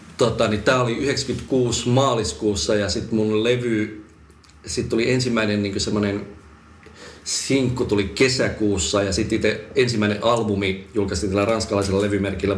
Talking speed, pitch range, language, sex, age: 125 wpm, 95-115 Hz, Finnish, male, 40-59